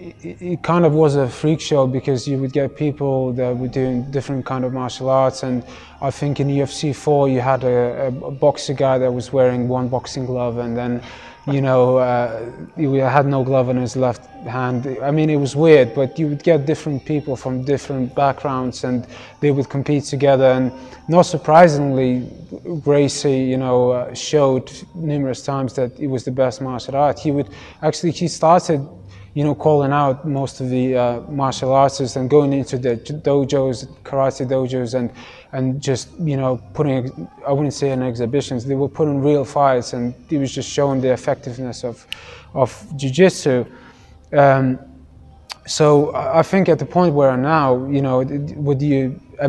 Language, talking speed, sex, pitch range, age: English, 180 wpm, male, 125-145 Hz, 20-39